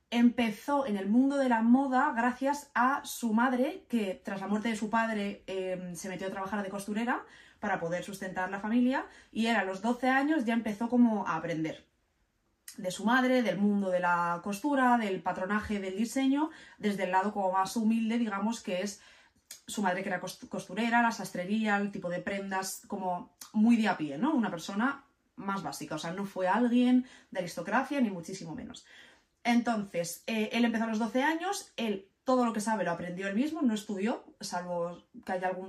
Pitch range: 190-245 Hz